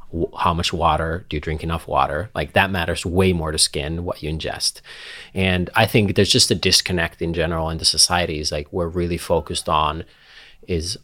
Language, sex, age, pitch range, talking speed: English, male, 30-49, 85-105 Hz, 195 wpm